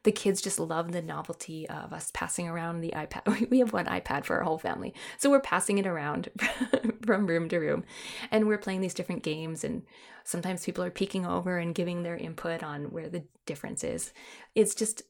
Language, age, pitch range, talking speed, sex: English, 20-39, 175-220 Hz, 205 wpm, female